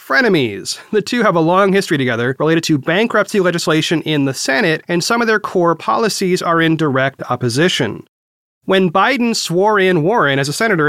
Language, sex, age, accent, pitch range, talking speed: English, male, 30-49, American, 145-195 Hz, 180 wpm